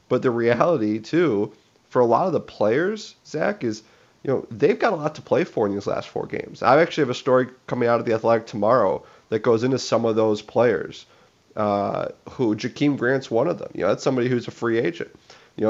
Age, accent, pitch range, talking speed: 30-49, American, 110-130 Hz, 230 wpm